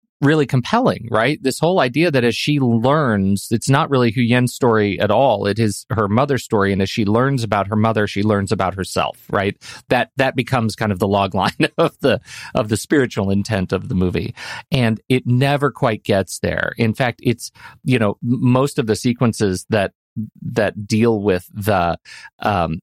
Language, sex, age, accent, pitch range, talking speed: English, male, 40-59, American, 100-120 Hz, 190 wpm